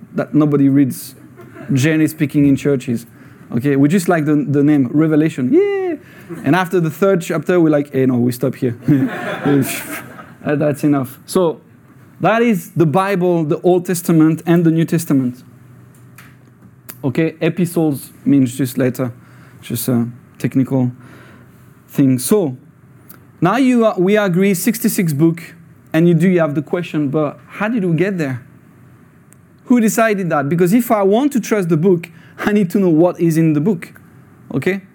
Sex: male